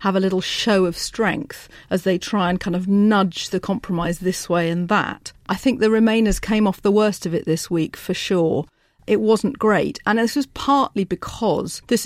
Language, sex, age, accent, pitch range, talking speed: English, female, 40-59, British, 180-215 Hz, 210 wpm